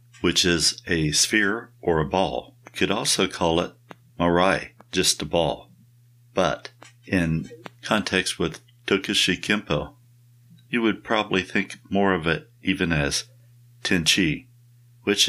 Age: 60-79